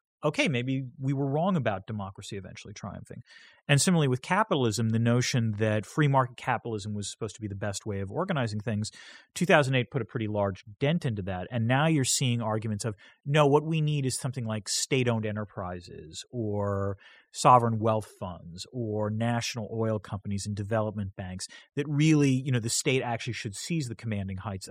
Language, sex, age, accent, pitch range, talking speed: English, male, 30-49, American, 105-135 Hz, 180 wpm